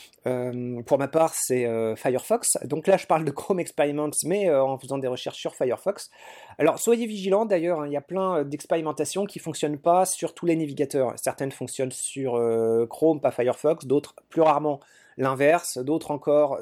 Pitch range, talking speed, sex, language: 140-180 Hz, 195 wpm, male, French